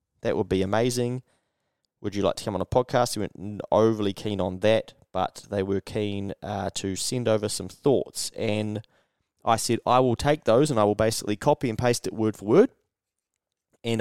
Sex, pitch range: male, 100-120 Hz